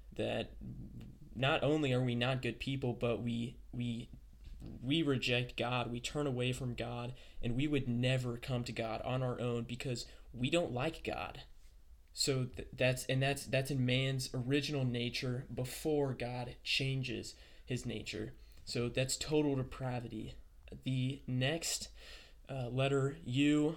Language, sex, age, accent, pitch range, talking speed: English, male, 20-39, American, 115-135 Hz, 145 wpm